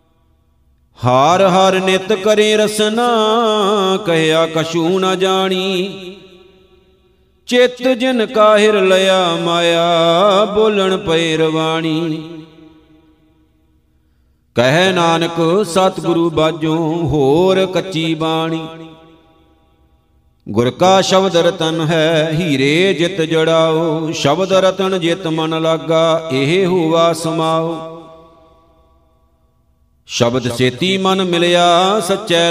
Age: 50-69